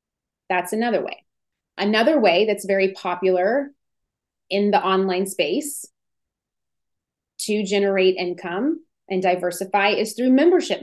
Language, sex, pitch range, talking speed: English, female, 200-250 Hz, 110 wpm